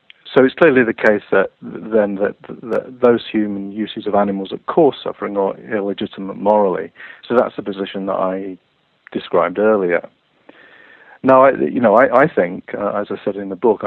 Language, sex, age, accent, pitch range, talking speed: English, male, 50-69, British, 95-110 Hz, 185 wpm